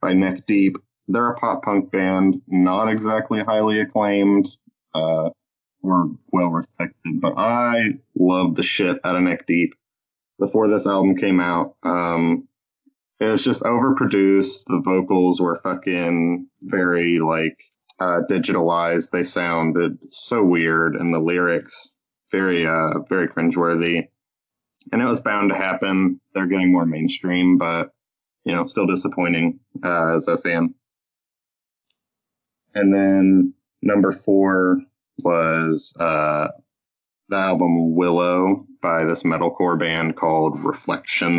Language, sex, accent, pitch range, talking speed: English, male, American, 85-95 Hz, 130 wpm